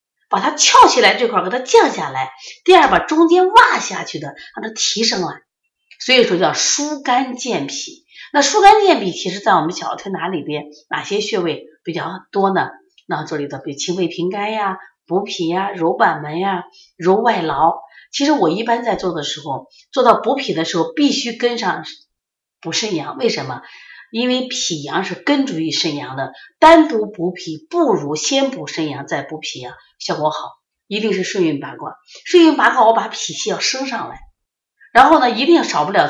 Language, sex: Chinese, female